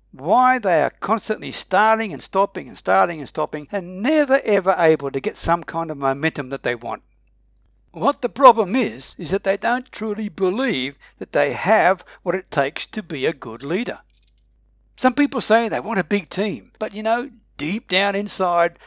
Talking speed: 190 wpm